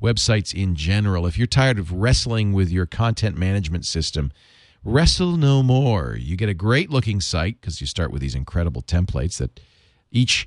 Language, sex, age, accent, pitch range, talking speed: English, male, 40-59, American, 85-120 Hz, 170 wpm